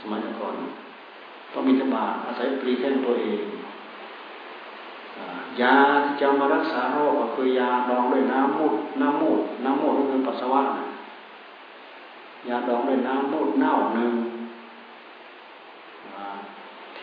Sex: male